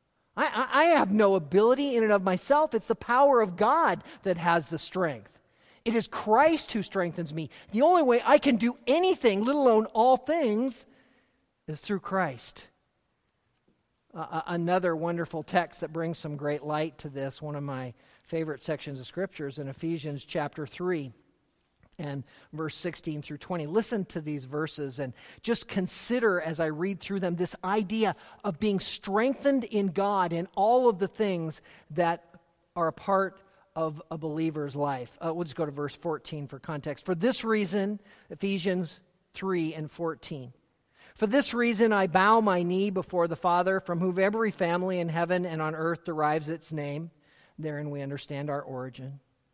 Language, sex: English, male